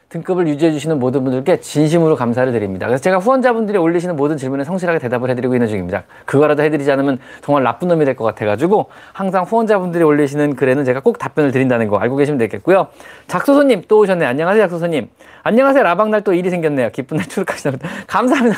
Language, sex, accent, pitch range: Korean, male, native, 145-210 Hz